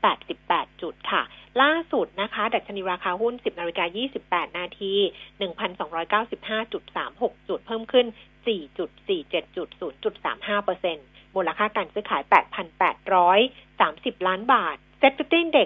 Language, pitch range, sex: Thai, 190-240 Hz, female